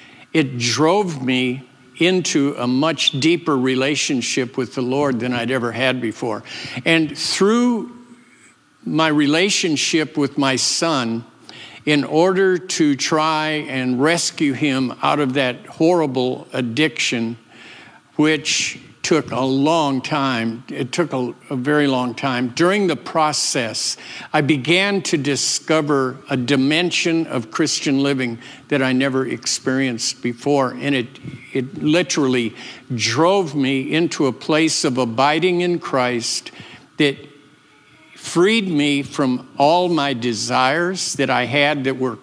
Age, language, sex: 50-69, English, male